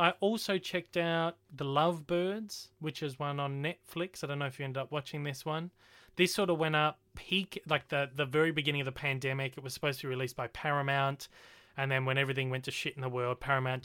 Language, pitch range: English, 130-155 Hz